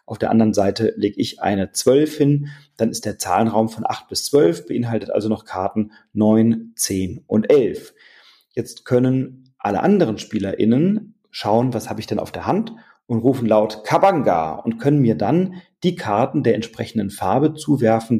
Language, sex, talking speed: German, male, 170 wpm